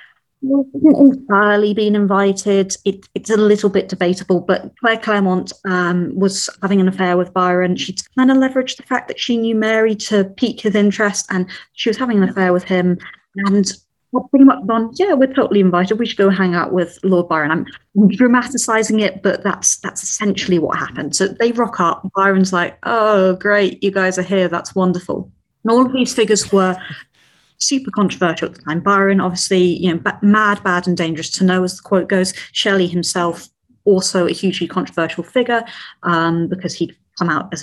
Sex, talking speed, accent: female, 195 wpm, British